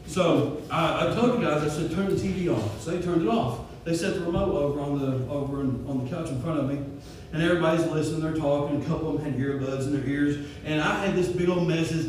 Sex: male